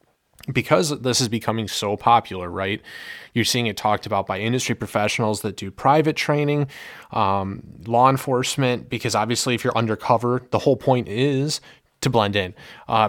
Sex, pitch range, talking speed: male, 100-120 Hz, 160 wpm